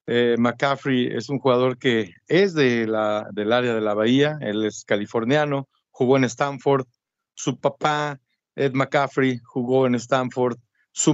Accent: Mexican